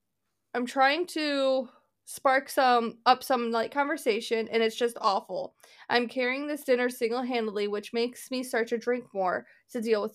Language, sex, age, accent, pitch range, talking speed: English, female, 20-39, American, 240-315 Hz, 165 wpm